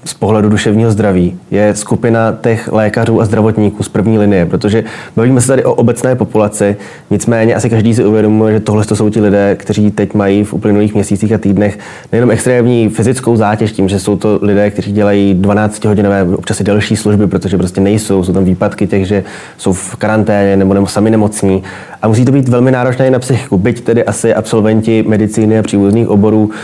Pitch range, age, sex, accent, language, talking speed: 100-110 Hz, 20-39, male, native, Czech, 190 wpm